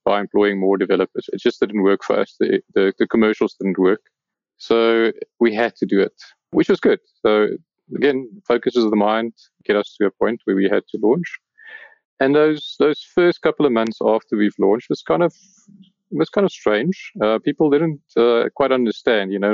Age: 30-49